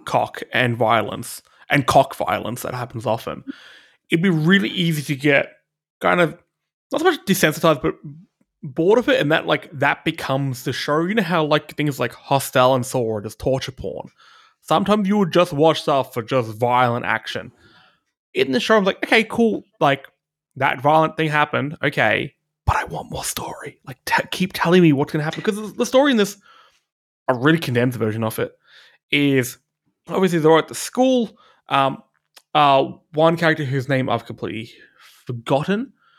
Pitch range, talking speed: 125-170 Hz, 180 wpm